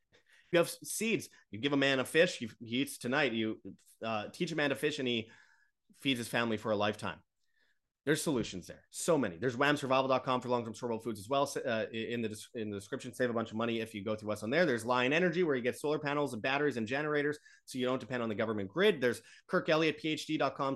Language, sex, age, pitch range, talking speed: English, male, 30-49, 110-140 Hz, 230 wpm